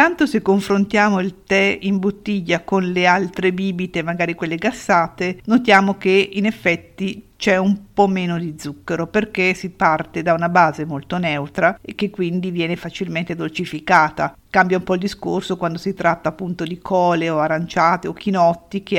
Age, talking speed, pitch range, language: 50-69, 170 wpm, 165-195 Hz, Italian